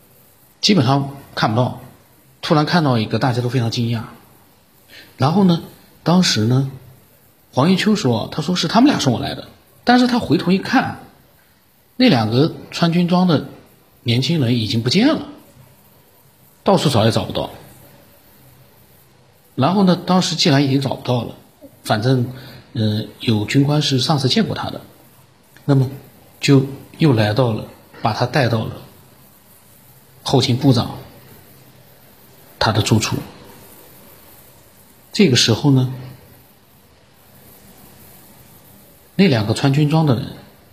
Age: 50-69